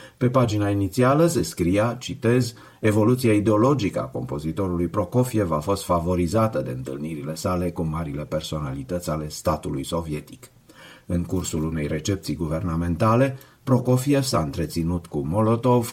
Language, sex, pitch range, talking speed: Romanian, male, 80-105 Hz, 125 wpm